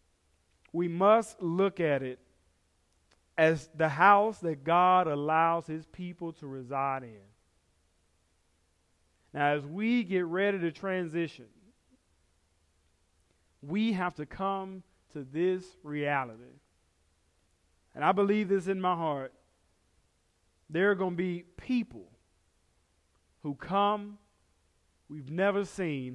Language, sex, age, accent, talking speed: English, male, 40-59, American, 110 wpm